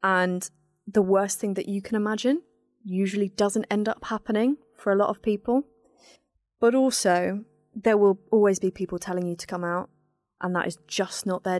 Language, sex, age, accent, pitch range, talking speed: English, female, 20-39, British, 185-215 Hz, 185 wpm